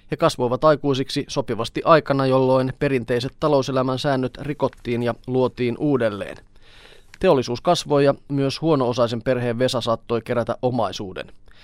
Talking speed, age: 115 wpm, 30-49